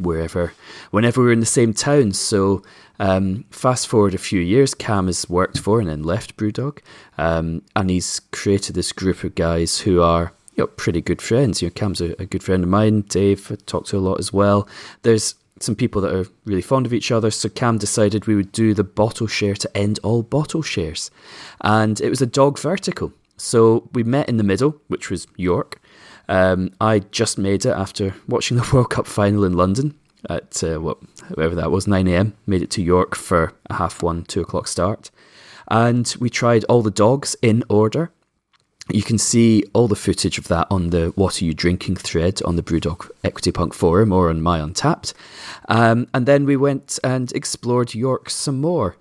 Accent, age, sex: British, 20-39, male